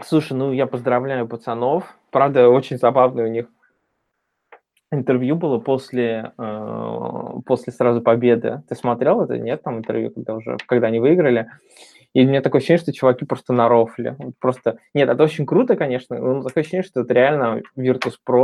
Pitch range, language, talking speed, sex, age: 115-130 Hz, Russian, 165 wpm, male, 20-39